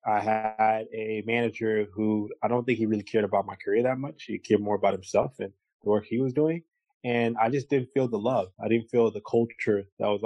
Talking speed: 240 wpm